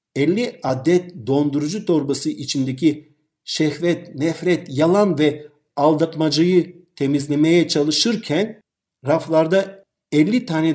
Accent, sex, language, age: native, male, Turkish, 50-69